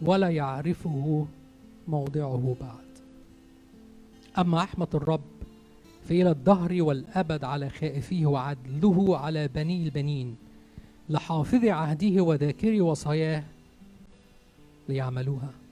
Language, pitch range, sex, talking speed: Arabic, 125-170 Hz, male, 80 wpm